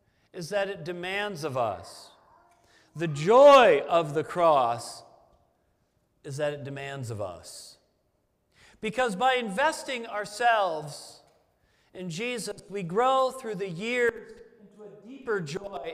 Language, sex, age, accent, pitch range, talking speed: English, male, 40-59, American, 205-270 Hz, 120 wpm